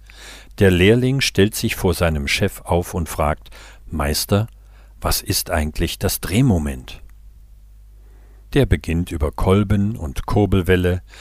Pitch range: 85-105 Hz